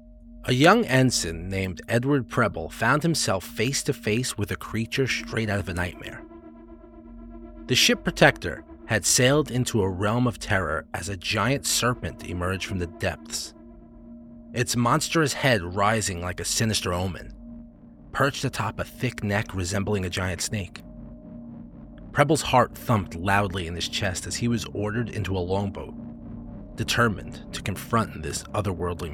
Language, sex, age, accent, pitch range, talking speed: English, male, 30-49, American, 95-120 Hz, 150 wpm